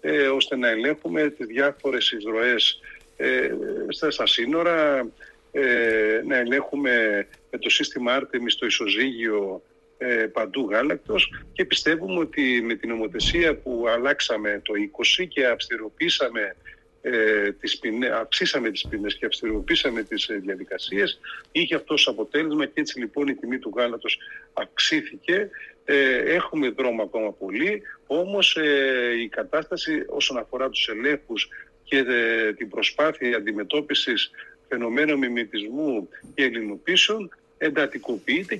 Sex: male